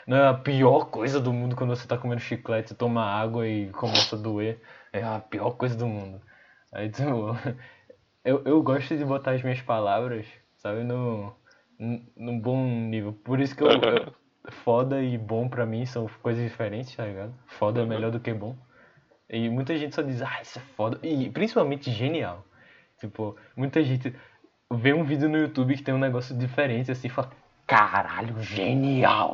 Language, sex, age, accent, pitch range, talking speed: Portuguese, male, 20-39, Brazilian, 115-135 Hz, 185 wpm